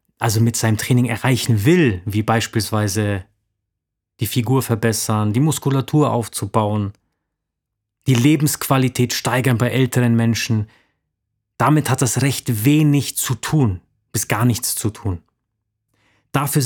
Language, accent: German, German